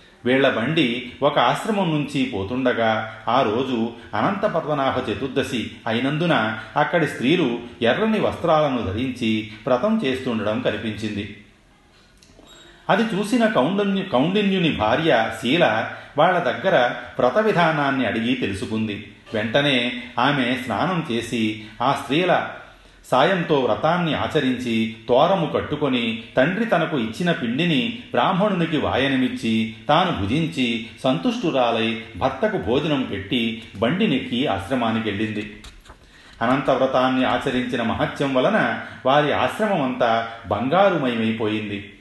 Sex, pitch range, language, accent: male, 110-145 Hz, Telugu, native